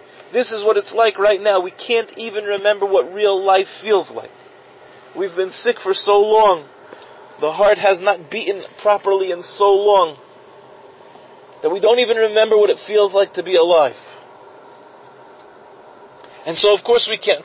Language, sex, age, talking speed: English, male, 40-59, 170 wpm